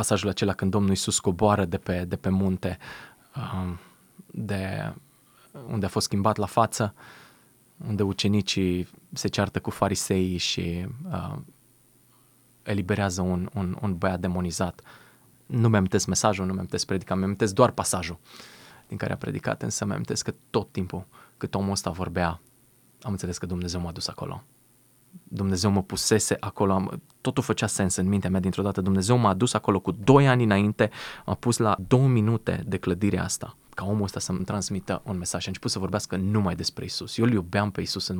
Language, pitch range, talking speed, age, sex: Romanian, 95-115 Hz, 175 wpm, 20-39, male